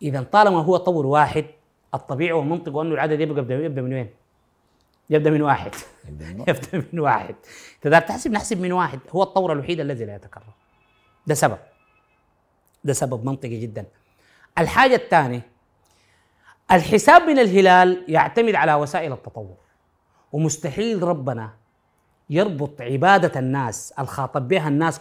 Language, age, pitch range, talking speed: Arabic, 30-49, 130-195 Hz, 125 wpm